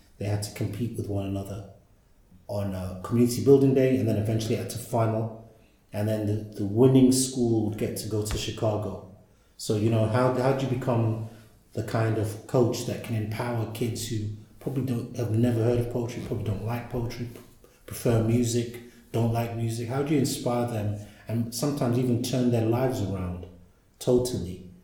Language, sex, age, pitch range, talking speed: English, male, 30-49, 105-120 Hz, 180 wpm